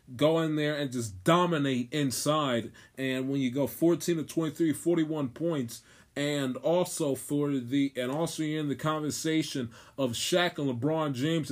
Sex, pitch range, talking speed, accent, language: male, 130-160 Hz, 170 wpm, American, English